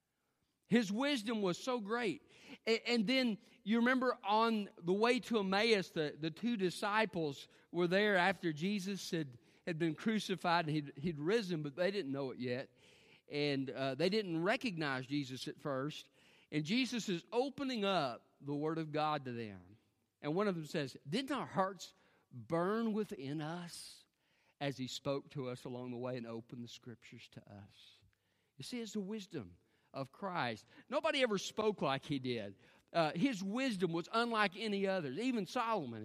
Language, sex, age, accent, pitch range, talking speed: English, male, 50-69, American, 135-220 Hz, 170 wpm